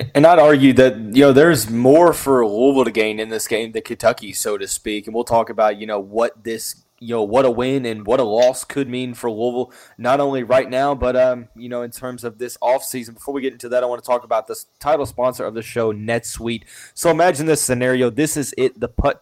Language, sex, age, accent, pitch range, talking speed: English, male, 20-39, American, 110-130 Hz, 250 wpm